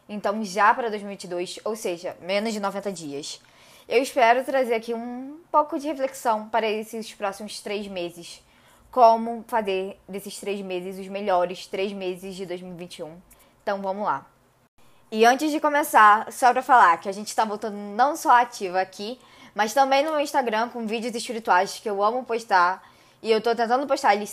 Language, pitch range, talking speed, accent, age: Portuguese, 200-275 Hz, 180 wpm, Brazilian, 10-29